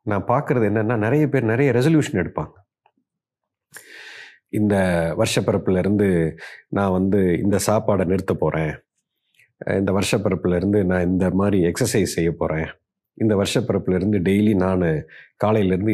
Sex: male